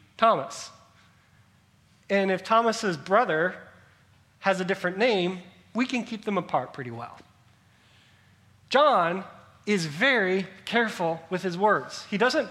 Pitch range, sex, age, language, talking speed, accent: 155-235 Hz, male, 30-49, English, 120 wpm, American